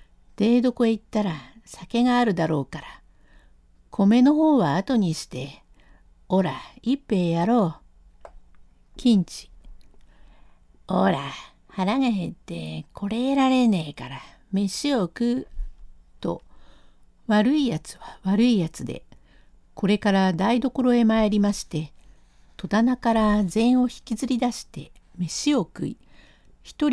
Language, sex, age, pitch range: Japanese, female, 60-79, 145-235 Hz